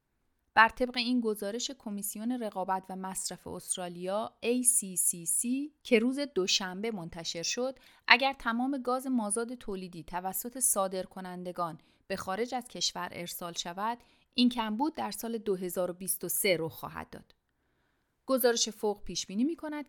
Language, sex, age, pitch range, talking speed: Persian, female, 30-49, 180-240 Hz, 125 wpm